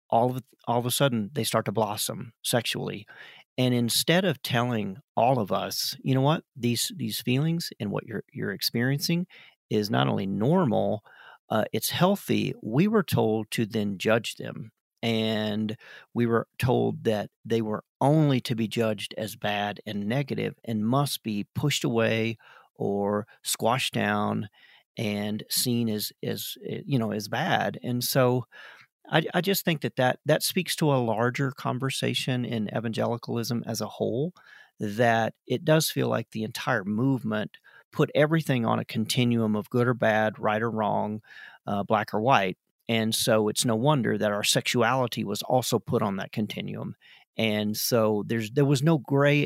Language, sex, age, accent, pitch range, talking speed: English, male, 40-59, American, 110-140 Hz, 170 wpm